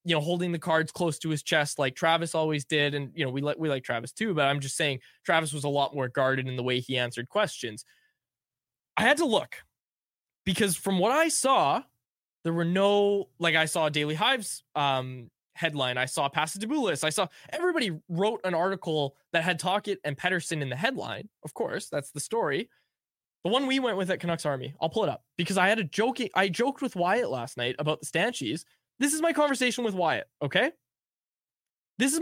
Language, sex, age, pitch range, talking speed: English, male, 20-39, 145-210 Hz, 215 wpm